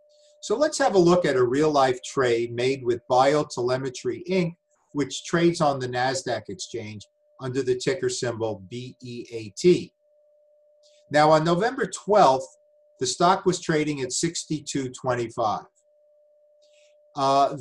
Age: 50-69